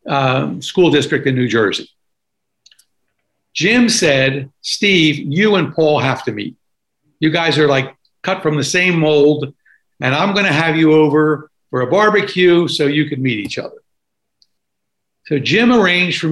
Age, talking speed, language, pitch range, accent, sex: 60-79, 160 wpm, English, 140-185 Hz, American, male